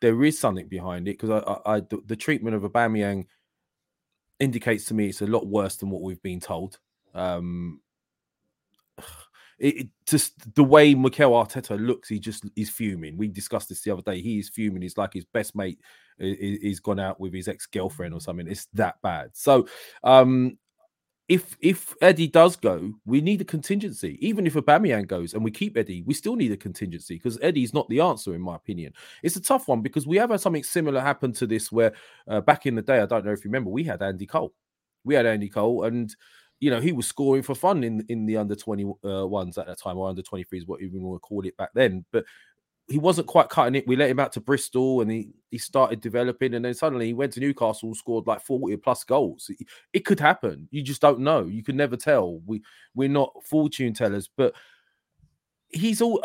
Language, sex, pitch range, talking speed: English, male, 105-145 Hz, 220 wpm